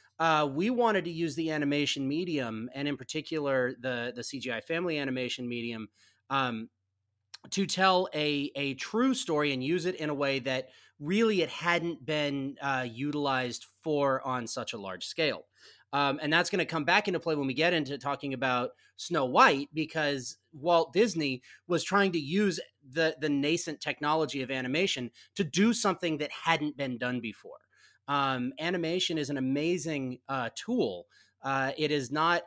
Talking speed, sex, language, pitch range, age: 170 wpm, male, English, 130-160 Hz, 30-49